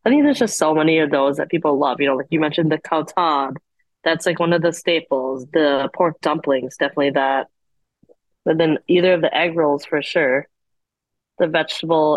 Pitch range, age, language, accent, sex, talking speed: 145-165 Hz, 20-39, English, American, female, 195 wpm